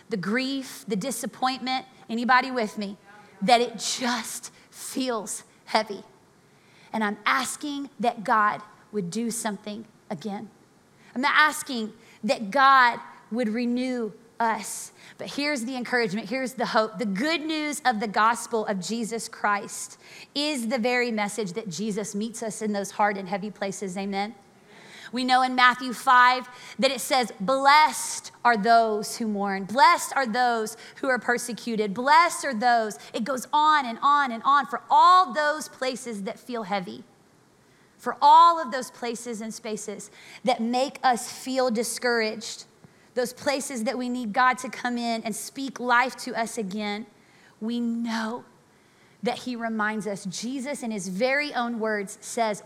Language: English